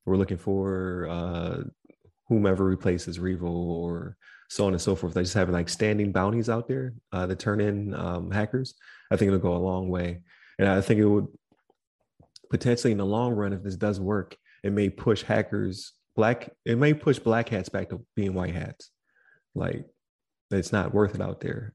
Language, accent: English, American